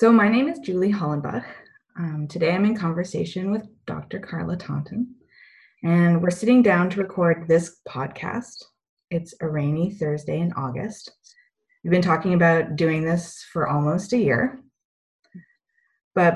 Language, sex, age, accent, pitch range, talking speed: English, female, 20-39, American, 150-205 Hz, 145 wpm